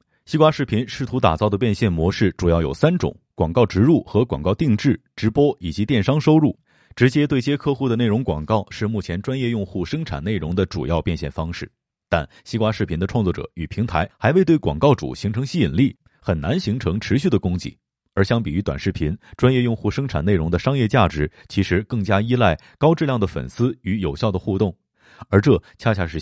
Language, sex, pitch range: Chinese, male, 90-120 Hz